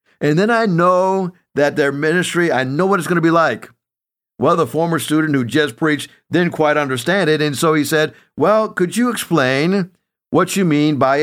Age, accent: 50-69, American